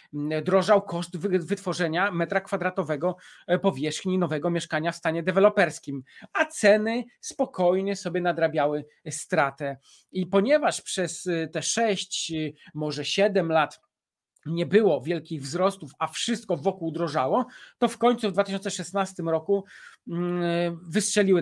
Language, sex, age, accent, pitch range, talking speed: Polish, male, 40-59, native, 160-200 Hz, 110 wpm